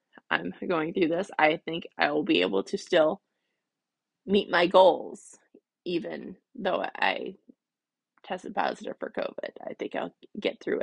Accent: American